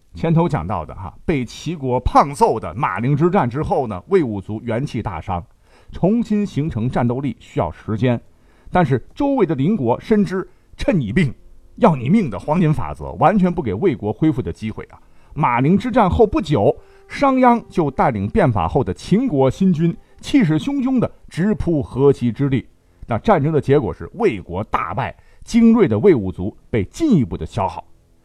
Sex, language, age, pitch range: male, Chinese, 50-69, 105-170 Hz